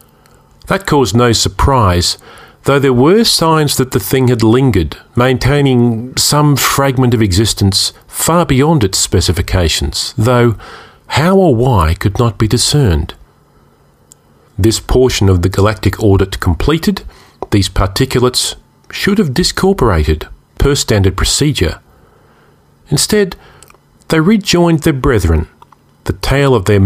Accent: Australian